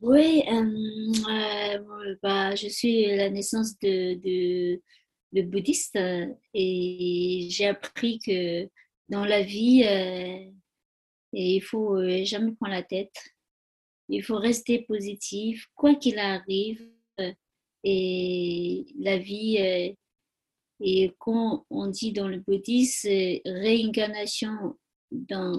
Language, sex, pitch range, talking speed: French, female, 190-225 Hz, 115 wpm